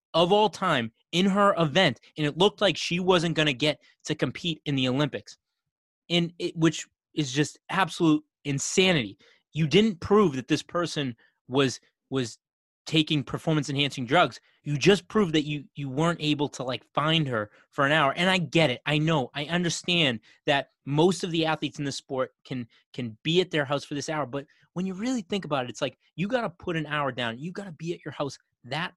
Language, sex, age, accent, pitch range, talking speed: English, male, 30-49, American, 130-165 Hz, 210 wpm